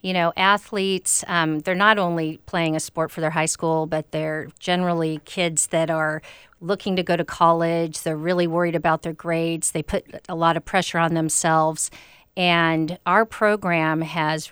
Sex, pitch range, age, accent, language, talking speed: female, 160-175 Hz, 50-69, American, English, 180 wpm